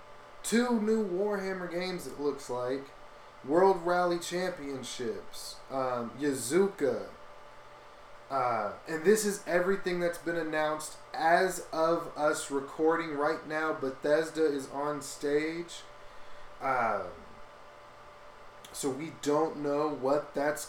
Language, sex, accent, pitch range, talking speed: English, male, American, 140-165 Hz, 105 wpm